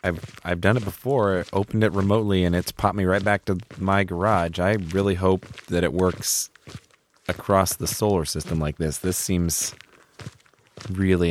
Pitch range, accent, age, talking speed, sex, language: 90-120 Hz, American, 30-49, 175 wpm, male, English